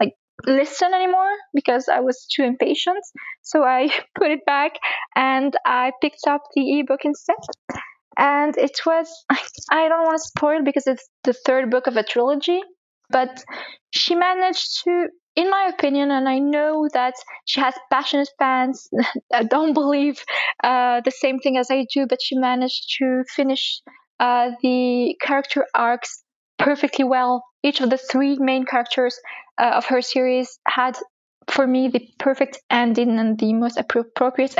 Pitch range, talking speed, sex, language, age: 245-290 Hz, 160 wpm, female, English, 20-39